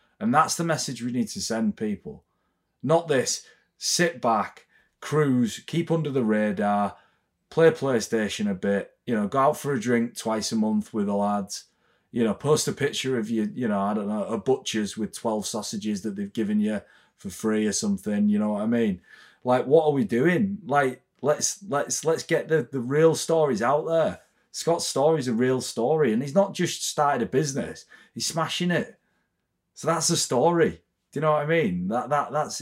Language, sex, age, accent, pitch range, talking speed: English, male, 30-49, British, 110-170 Hz, 200 wpm